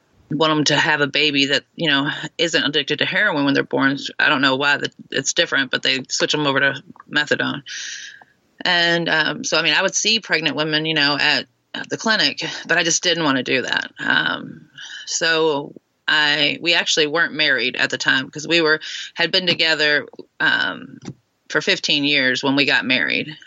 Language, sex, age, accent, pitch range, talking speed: English, female, 20-39, American, 145-170 Hz, 200 wpm